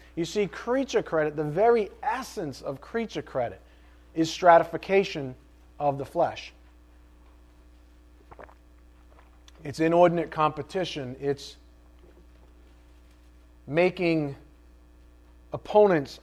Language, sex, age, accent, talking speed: English, male, 40-59, American, 80 wpm